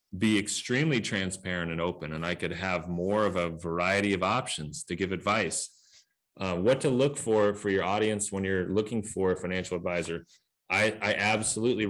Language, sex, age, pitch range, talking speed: English, male, 30-49, 90-110 Hz, 180 wpm